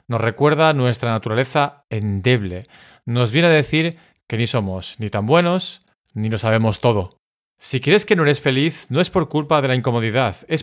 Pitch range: 115-160 Hz